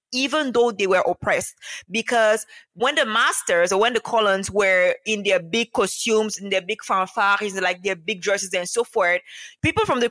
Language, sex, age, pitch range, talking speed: English, female, 20-39, 195-235 Hz, 190 wpm